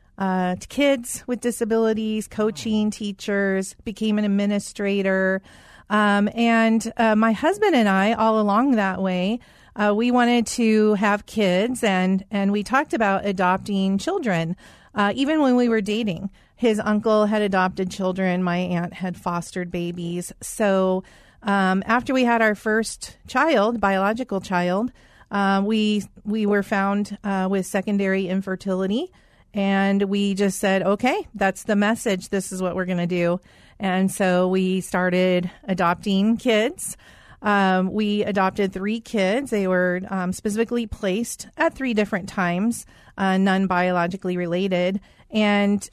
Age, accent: 40-59, American